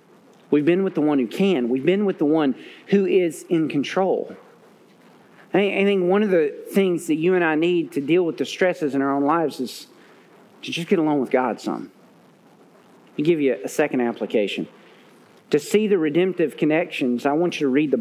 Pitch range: 155-195 Hz